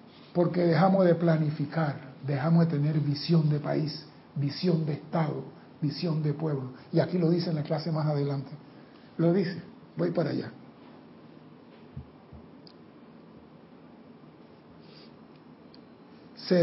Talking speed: 110 wpm